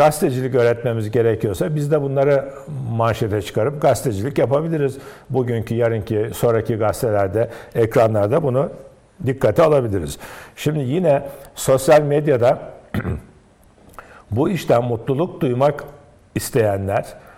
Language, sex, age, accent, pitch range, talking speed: Turkish, male, 60-79, native, 115-145 Hz, 95 wpm